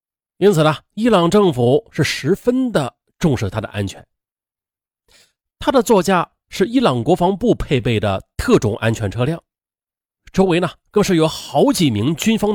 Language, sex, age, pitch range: Chinese, male, 30-49, 105-175 Hz